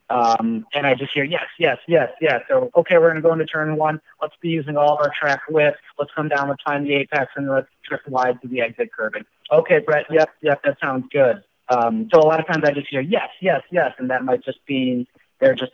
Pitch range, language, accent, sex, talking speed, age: 125-160 Hz, English, American, male, 255 wpm, 30-49